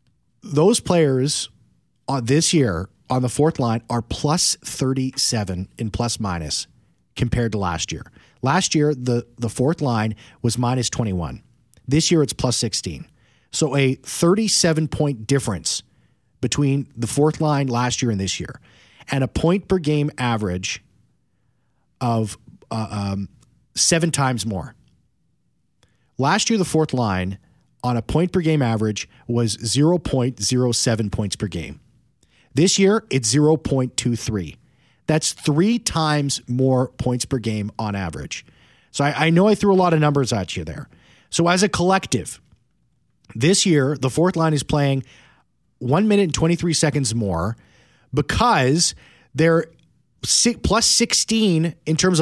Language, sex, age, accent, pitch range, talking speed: English, male, 40-59, American, 115-160 Hz, 140 wpm